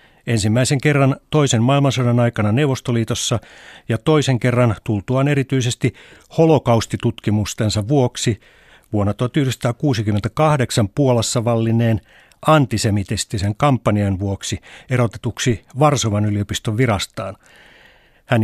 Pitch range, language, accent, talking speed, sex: 105-135 Hz, Finnish, native, 80 wpm, male